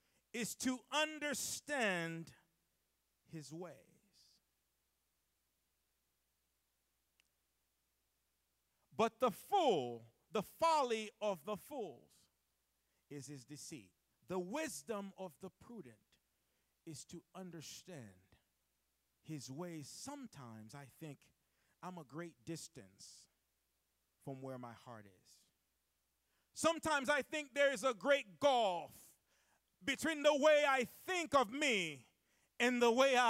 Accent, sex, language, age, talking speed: American, male, English, 50-69, 100 wpm